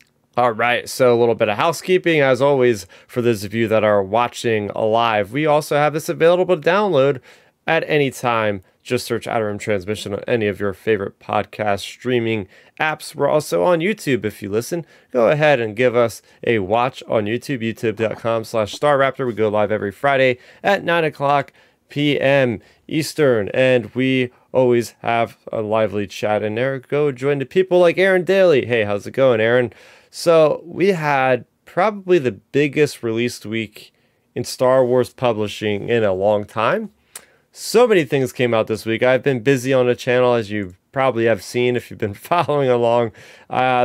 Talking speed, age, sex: 180 wpm, 30-49, male